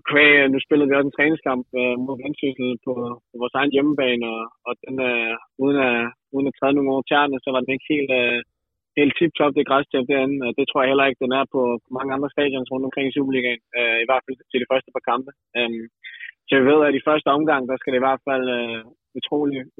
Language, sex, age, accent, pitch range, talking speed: Danish, male, 20-39, native, 120-135 Hz, 225 wpm